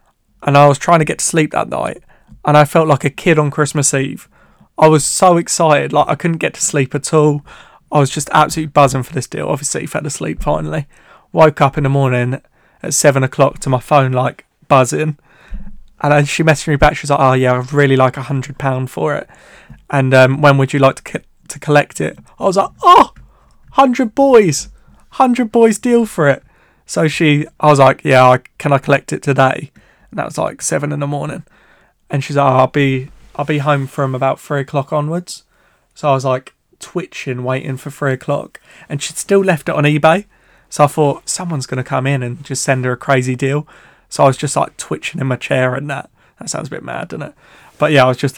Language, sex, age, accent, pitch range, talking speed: English, male, 20-39, British, 130-155 Hz, 225 wpm